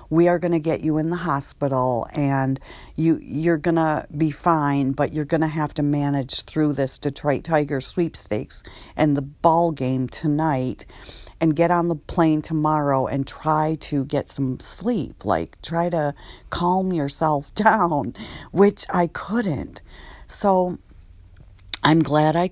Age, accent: 40-59, American